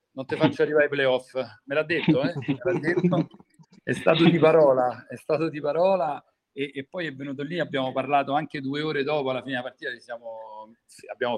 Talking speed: 205 wpm